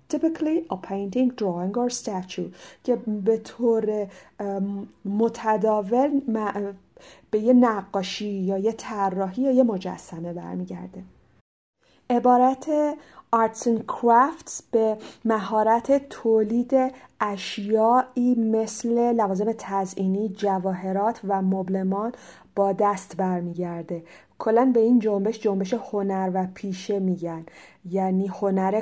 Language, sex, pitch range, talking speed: Persian, female, 185-235 Hz, 100 wpm